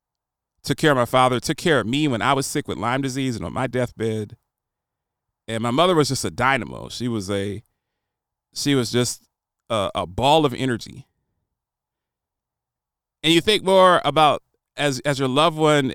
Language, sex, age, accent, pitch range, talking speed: English, male, 30-49, American, 110-145 Hz, 180 wpm